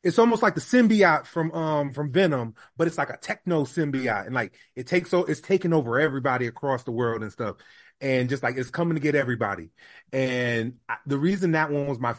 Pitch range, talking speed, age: 115-150 Hz, 220 wpm, 30-49